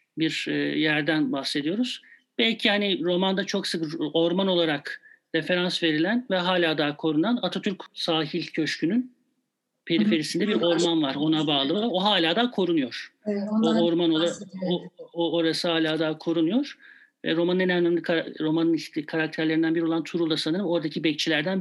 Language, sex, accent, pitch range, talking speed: Turkish, male, native, 160-210 Hz, 135 wpm